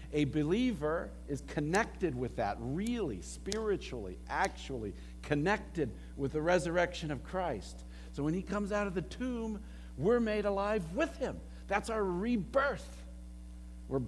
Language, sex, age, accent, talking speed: English, male, 60-79, American, 135 wpm